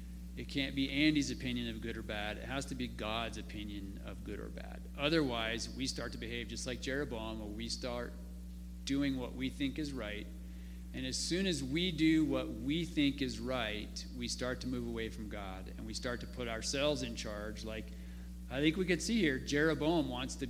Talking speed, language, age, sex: 210 wpm, English, 40-59, male